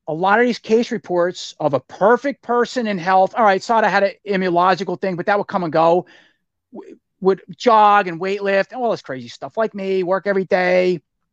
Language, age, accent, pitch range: English, 30-49, American, 170-215 Hz